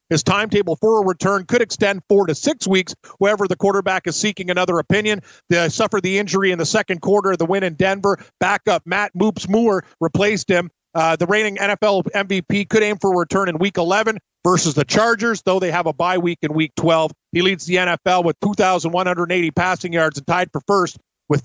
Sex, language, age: male, English, 40-59